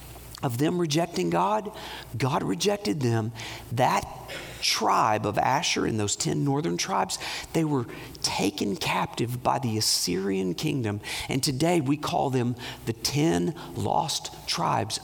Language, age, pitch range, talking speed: English, 50-69, 115-180 Hz, 130 wpm